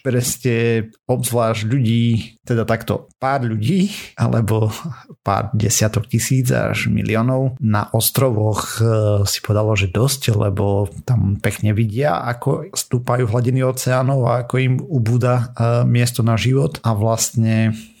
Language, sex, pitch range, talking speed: Slovak, male, 105-125 Hz, 125 wpm